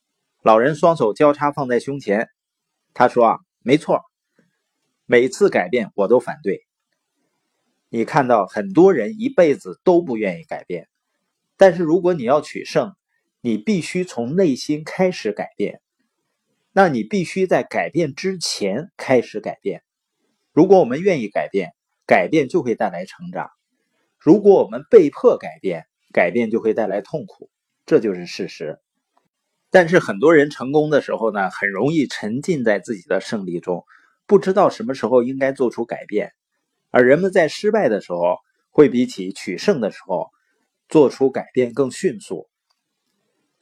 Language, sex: Chinese, male